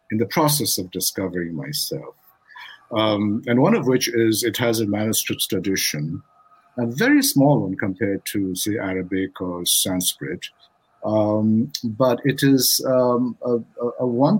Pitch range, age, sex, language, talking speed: 105-120 Hz, 50-69, male, English, 140 wpm